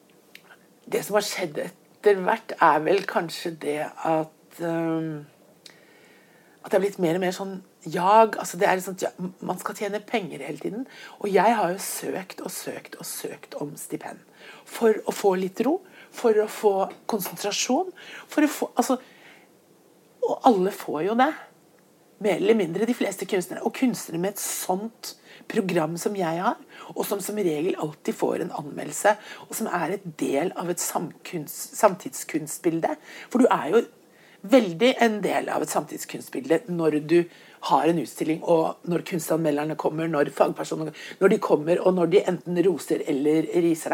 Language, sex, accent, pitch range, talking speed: English, female, Swedish, 170-230 Hz, 165 wpm